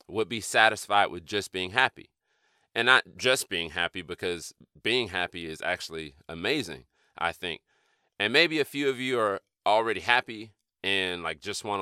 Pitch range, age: 90-115 Hz, 30-49